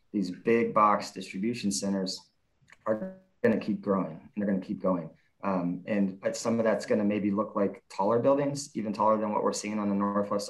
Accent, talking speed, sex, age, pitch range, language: American, 195 wpm, male, 20-39, 100-110 Hz, English